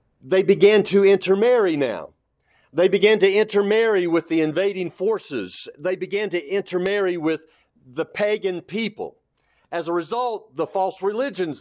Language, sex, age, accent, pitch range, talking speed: English, male, 50-69, American, 160-210 Hz, 140 wpm